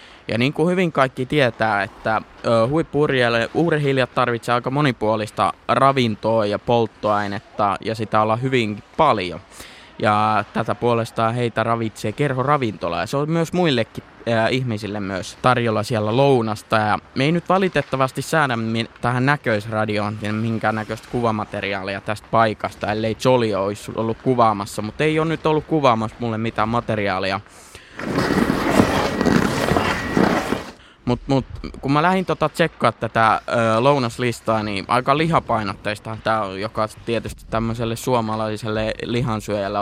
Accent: native